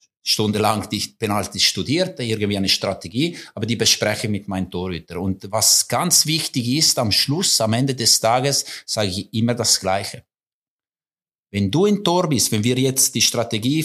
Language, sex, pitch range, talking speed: German, male, 100-140 Hz, 175 wpm